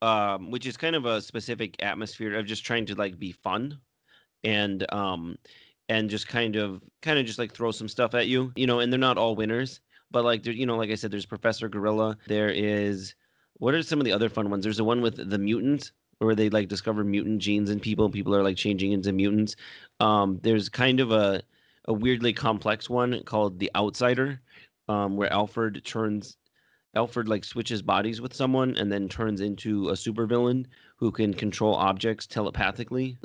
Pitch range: 100-120 Hz